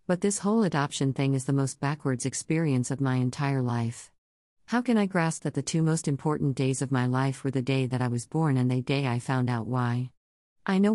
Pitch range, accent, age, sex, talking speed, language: 130-155 Hz, American, 50-69, female, 235 wpm, English